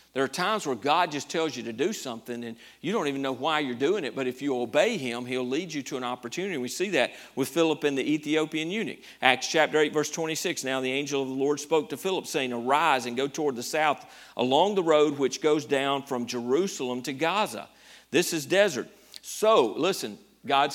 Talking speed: 225 wpm